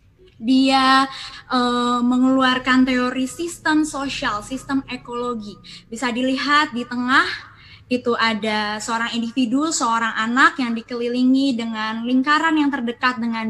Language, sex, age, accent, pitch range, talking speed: Indonesian, female, 20-39, native, 225-280 Hz, 110 wpm